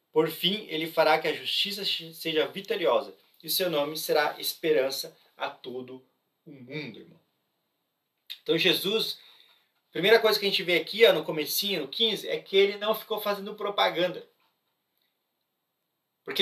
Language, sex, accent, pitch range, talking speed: Portuguese, male, Brazilian, 185-230 Hz, 155 wpm